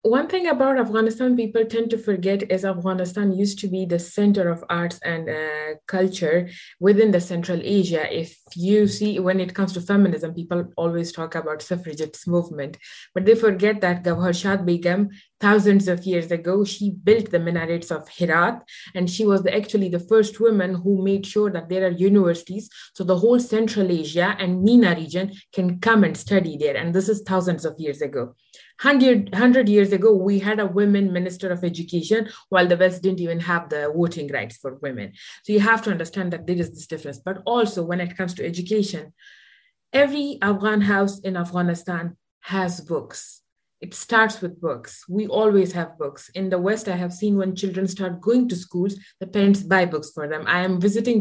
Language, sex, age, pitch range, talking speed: English, female, 20-39, 175-205 Hz, 190 wpm